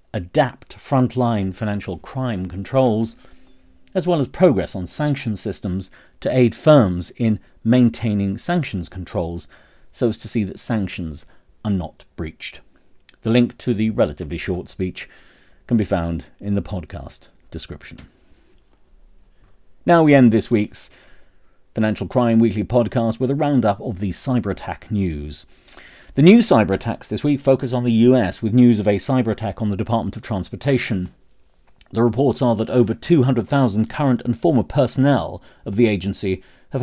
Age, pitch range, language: 40-59, 90-125 Hz, English